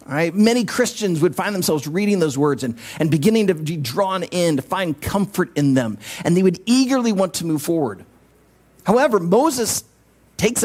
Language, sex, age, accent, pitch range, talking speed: English, male, 40-59, American, 150-225 Hz, 185 wpm